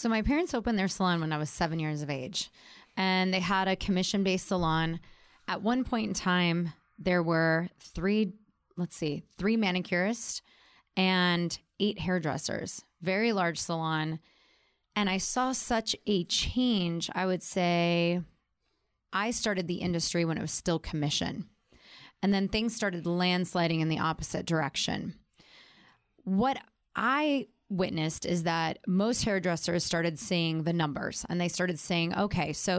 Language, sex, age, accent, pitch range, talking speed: English, female, 20-39, American, 170-205 Hz, 150 wpm